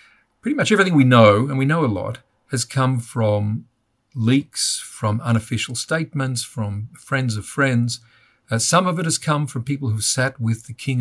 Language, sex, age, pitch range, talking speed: English, male, 50-69, 110-130 Hz, 190 wpm